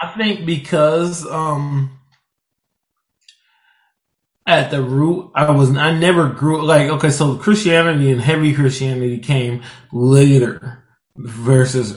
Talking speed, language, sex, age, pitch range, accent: 110 wpm, English, male, 20-39, 125-145 Hz, American